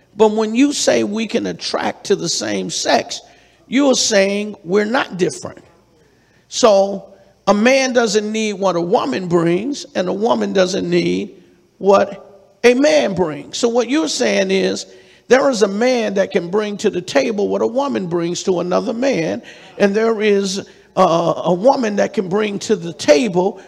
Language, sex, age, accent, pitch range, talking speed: English, male, 50-69, American, 185-230 Hz, 175 wpm